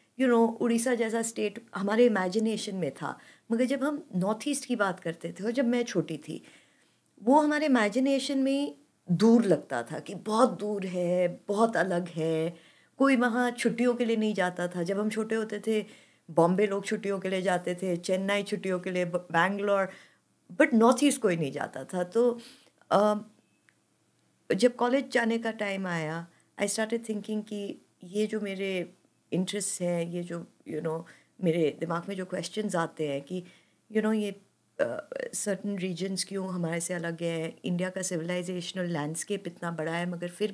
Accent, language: native, Hindi